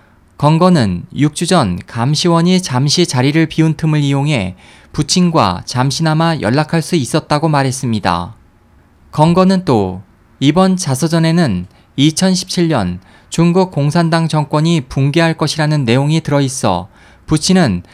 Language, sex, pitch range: Korean, male, 115-170 Hz